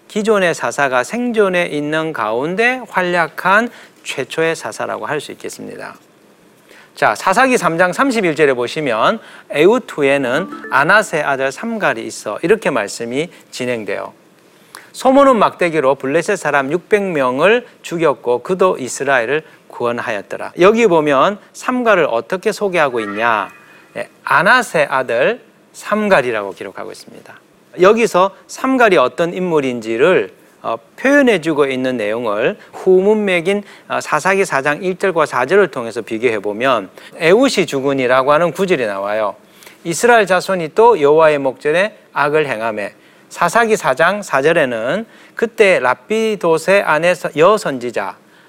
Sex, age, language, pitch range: male, 40-59, Korean, 150-210 Hz